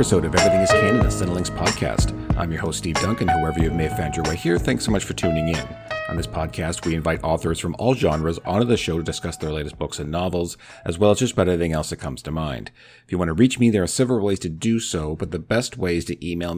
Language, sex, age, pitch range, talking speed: English, male, 40-59, 85-110 Hz, 275 wpm